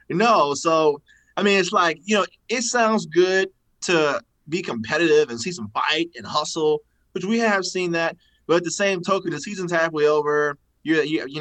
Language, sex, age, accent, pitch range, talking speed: English, male, 20-39, American, 125-170 Hz, 195 wpm